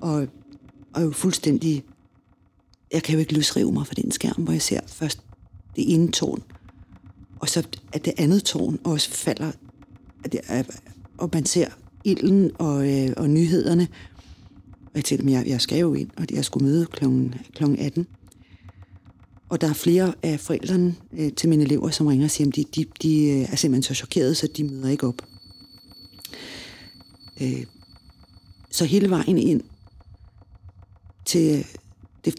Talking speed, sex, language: 150 wpm, female, Danish